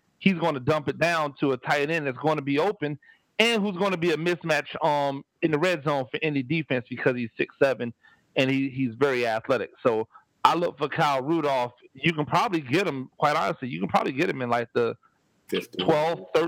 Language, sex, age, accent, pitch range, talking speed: English, male, 40-59, American, 135-170 Hz, 220 wpm